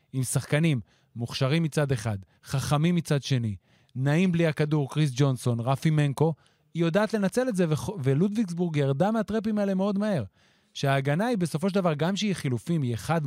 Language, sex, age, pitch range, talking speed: Hebrew, male, 30-49, 130-175 Hz, 165 wpm